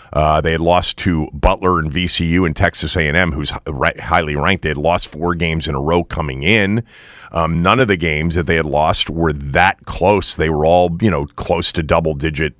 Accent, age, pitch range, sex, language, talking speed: American, 40-59, 85-105 Hz, male, English, 215 wpm